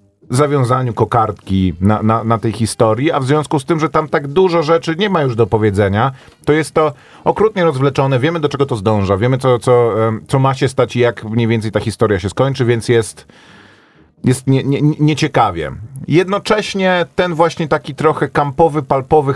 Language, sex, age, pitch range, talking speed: Polish, male, 40-59, 105-135 Hz, 175 wpm